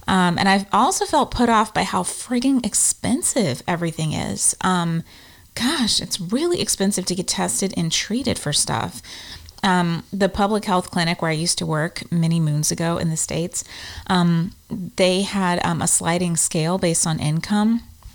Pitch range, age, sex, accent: 165-200 Hz, 30-49, female, American